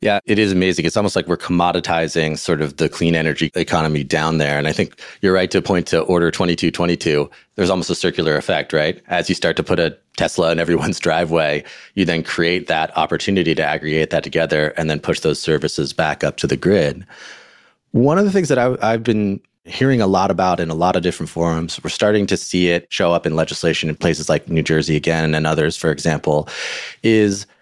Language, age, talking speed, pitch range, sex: English, 30-49, 215 wpm, 80-95 Hz, male